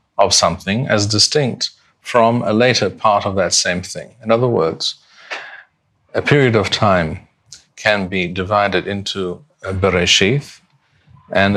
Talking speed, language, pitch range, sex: 135 wpm, English, 95-120 Hz, male